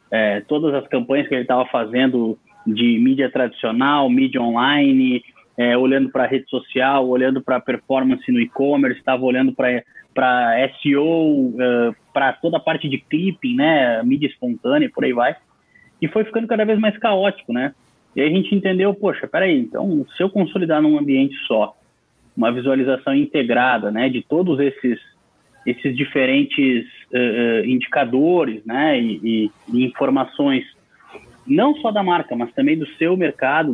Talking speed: 155 wpm